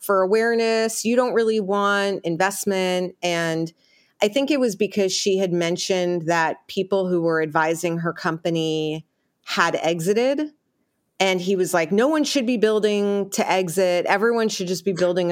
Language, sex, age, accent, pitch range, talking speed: English, female, 30-49, American, 170-215 Hz, 160 wpm